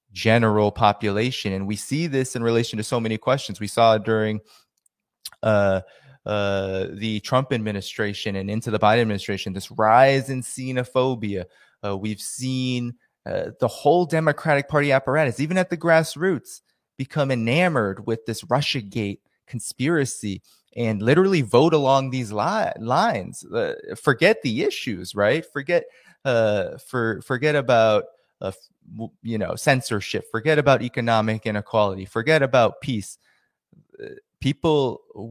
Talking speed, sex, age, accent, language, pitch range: 125 wpm, male, 20-39, American, English, 110-145 Hz